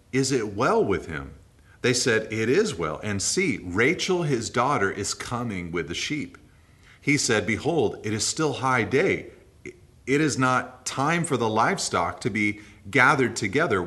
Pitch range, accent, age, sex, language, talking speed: 100-130 Hz, American, 40-59, male, English, 170 wpm